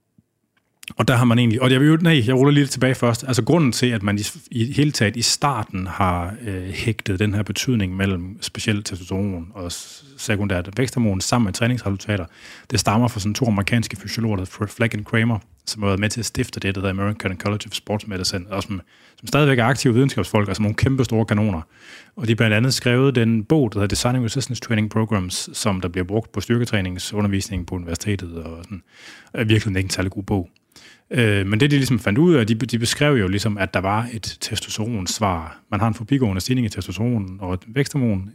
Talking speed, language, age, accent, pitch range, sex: 215 wpm, Danish, 30-49, native, 100-120 Hz, male